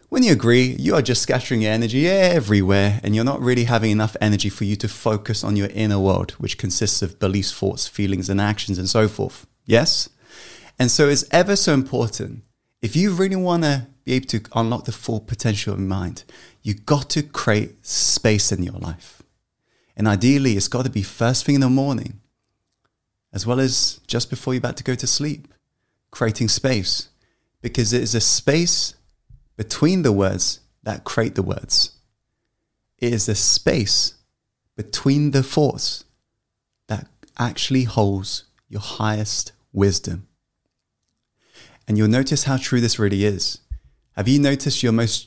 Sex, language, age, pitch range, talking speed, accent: male, English, 20-39, 105-130 Hz, 165 wpm, British